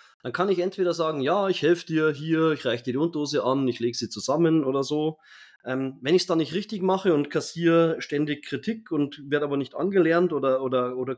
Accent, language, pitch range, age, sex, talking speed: German, German, 130-170 Hz, 30-49, male, 220 wpm